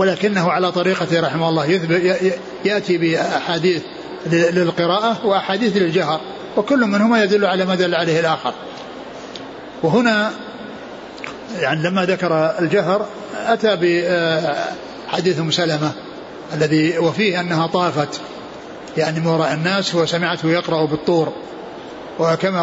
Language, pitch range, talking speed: Arabic, 165-185 Hz, 100 wpm